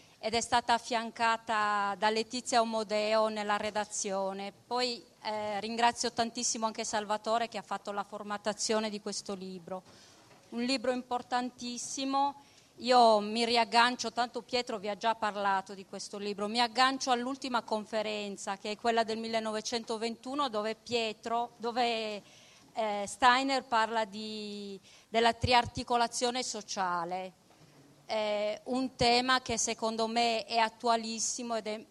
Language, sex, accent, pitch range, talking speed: Italian, female, native, 205-240 Hz, 120 wpm